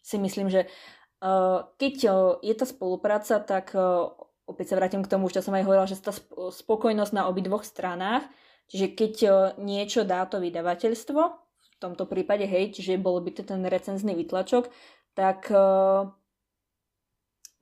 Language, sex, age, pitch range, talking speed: Slovak, female, 20-39, 185-220 Hz, 165 wpm